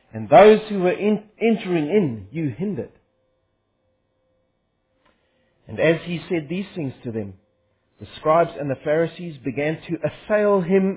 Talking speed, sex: 135 wpm, male